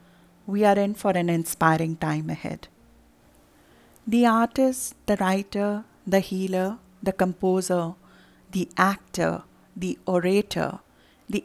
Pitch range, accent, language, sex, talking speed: 175-215 Hz, Indian, English, female, 110 wpm